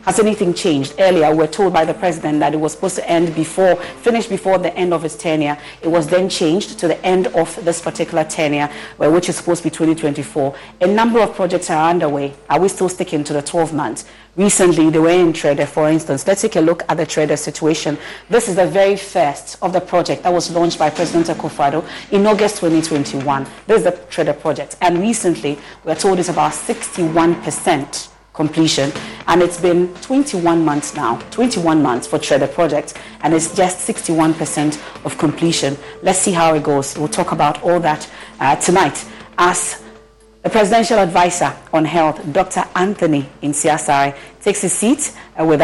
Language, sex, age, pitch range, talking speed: English, female, 40-59, 155-185 Hz, 190 wpm